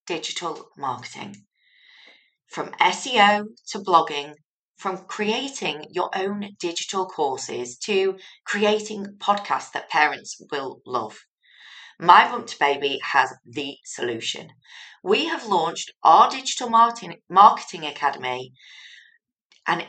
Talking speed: 100 wpm